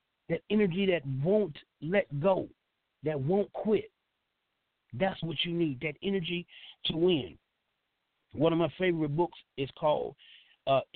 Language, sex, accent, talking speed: English, male, American, 135 wpm